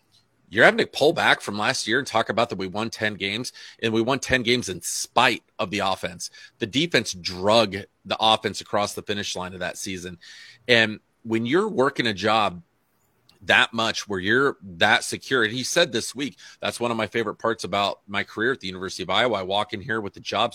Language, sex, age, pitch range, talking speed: English, male, 30-49, 95-120 Hz, 220 wpm